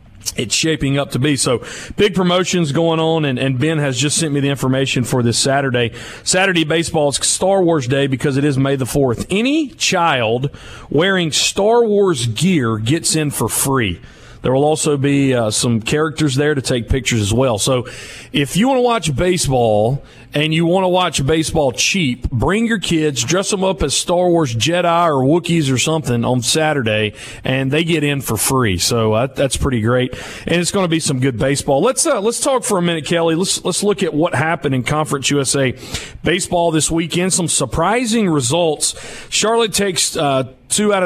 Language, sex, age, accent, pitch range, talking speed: English, male, 40-59, American, 130-170 Hz, 195 wpm